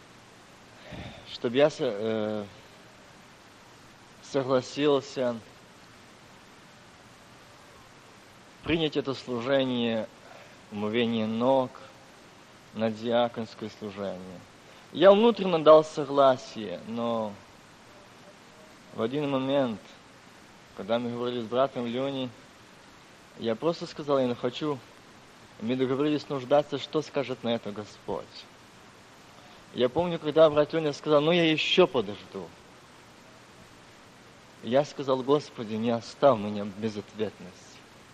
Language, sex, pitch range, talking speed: Russian, male, 120-155 Hz, 90 wpm